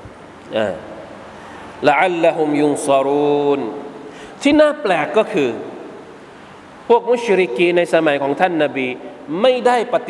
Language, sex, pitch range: Thai, male, 185-300 Hz